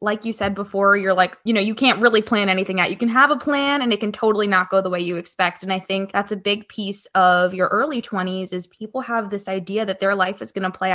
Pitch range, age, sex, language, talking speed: 190-220 Hz, 20-39, female, English, 285 wpm